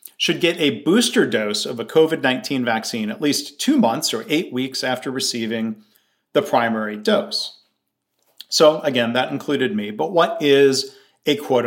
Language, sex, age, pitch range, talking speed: English, male, 40-59, 110-140 Hz, 160 wpm